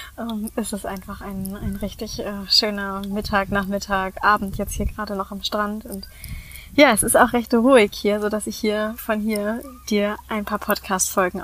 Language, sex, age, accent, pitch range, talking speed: German, female, 20-39, German, 195-215 Hz, 190 wpm